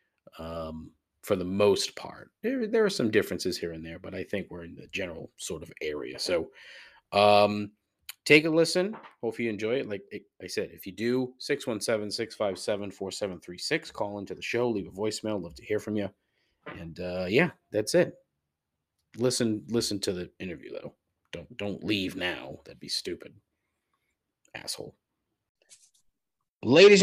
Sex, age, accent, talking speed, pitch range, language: male, 30-49, American, 180 wpm, 100-125 Hz, English